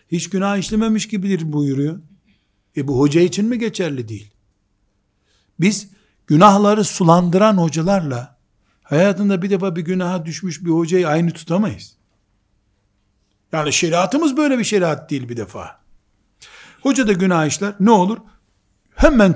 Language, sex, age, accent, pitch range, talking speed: Turkish, male, 60-79, native, 135-195 Hz, 125 wpm